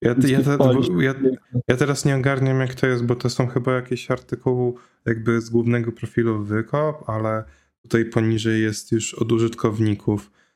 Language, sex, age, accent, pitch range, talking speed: Polish, male, 20-39, native, 110-130 Hz, 150 wpm